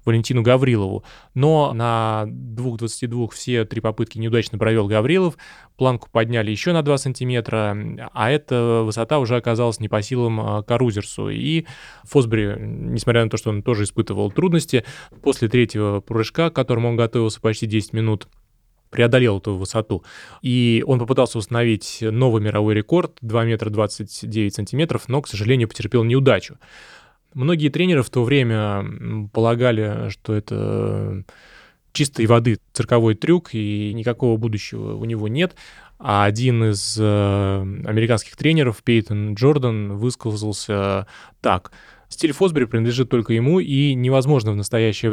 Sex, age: male, 20-39